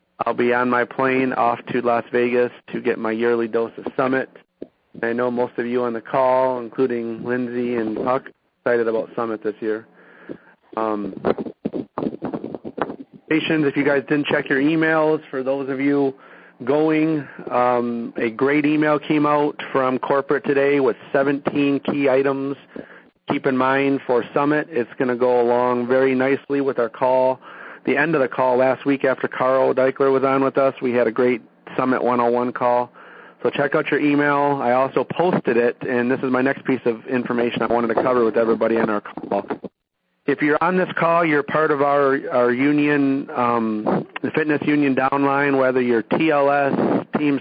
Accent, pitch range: American, 120-140 Hz